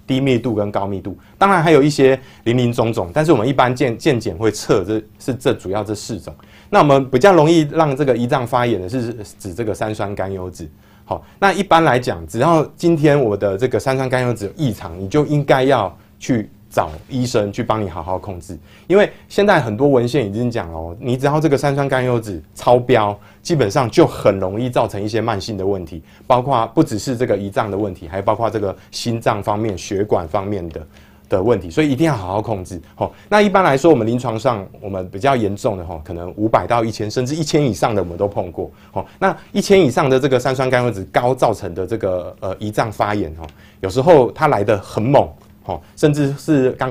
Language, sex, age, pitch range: Chinese, male, 30-49, 100-135 Hz